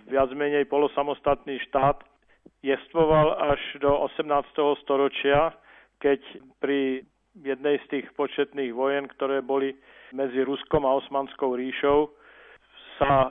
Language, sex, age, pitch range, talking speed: Slovak, male, 50-69, 135-145 Hz, 105 wpm